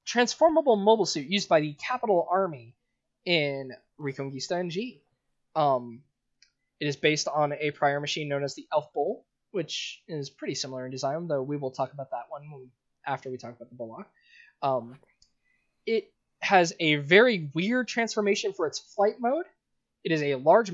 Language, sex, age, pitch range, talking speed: English, male, 20-39, 140-225 Hz, 170 wpm